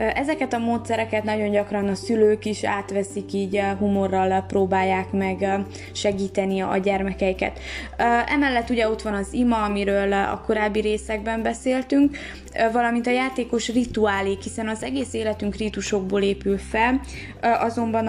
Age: 20-39